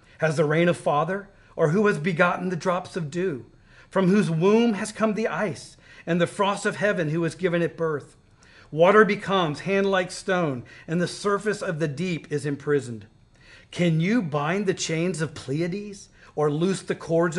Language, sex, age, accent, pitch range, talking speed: English, male, 40-59, American, 160-205 Hz, 185 wpm